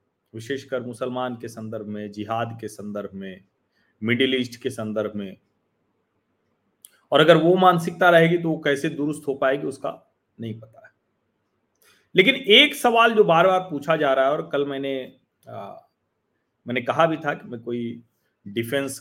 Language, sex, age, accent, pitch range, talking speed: Hindi, male, 30-49, native, 115-140 Hz, 160 wpm